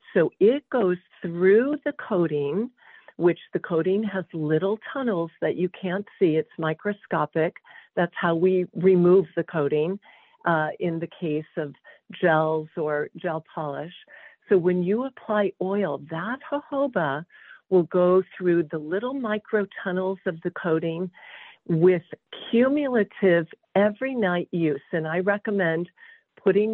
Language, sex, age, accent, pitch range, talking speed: English, female, 50-69, American, 160-200 Hz, 130 wpm